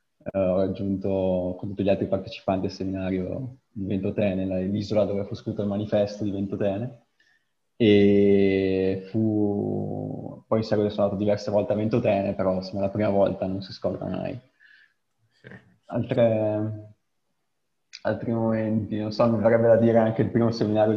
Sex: male